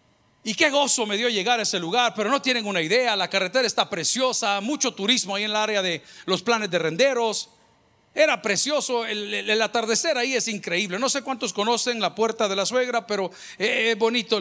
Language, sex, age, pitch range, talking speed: Spanish, male, 50-69, 205-265 Hz, 205 wpm